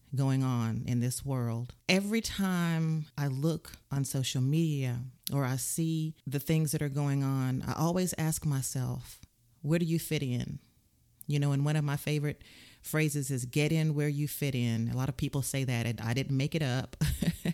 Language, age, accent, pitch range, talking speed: English, 40-59, American, 135-165 Hz, 195 wpm